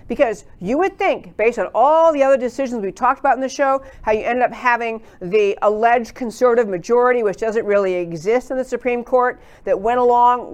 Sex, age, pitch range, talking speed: female, 50-69, 210-270 Hz, 205 wpm